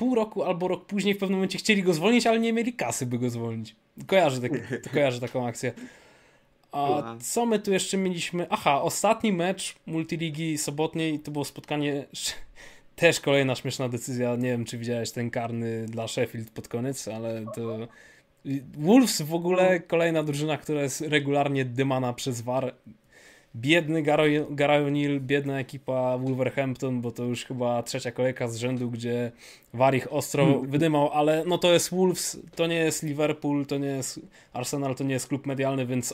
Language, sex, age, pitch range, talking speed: Polish, male, 20-39, 130-170 Hz, 170 wpm